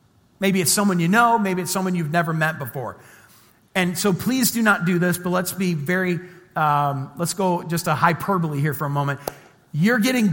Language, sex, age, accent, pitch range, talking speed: English, male, 40-59, American, 150-195 Hz, 205 wpm